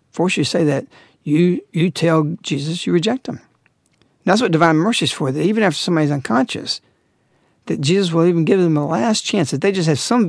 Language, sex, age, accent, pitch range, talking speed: English, male, 60-79, American, 145-190 Hz, 220 wpm